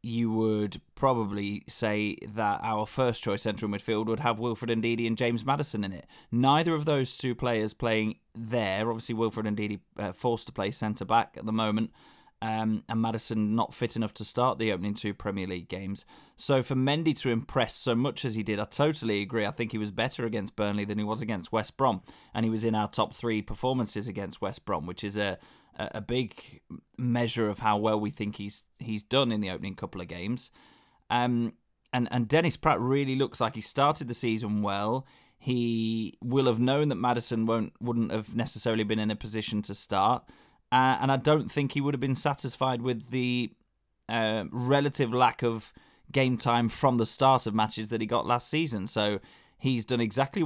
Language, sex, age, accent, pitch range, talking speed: English, male, 20-39, British, 105-125 Hz, 200 wpm